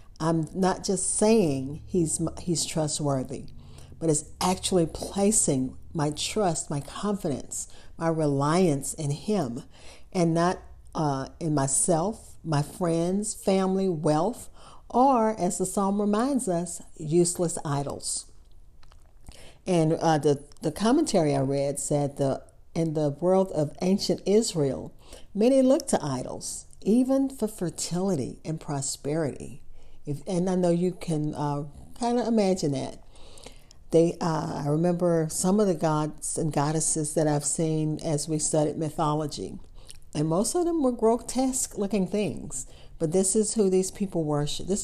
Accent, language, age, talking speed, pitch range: American, English, 50-69, 140 wpm, 150-190 Hz